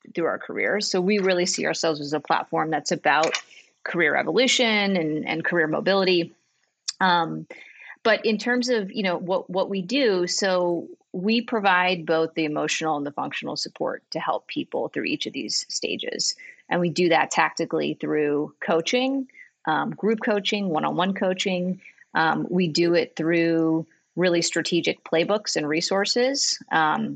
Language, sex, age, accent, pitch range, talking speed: English, female, 30-49, American, 160-210 Hz, 155 wpm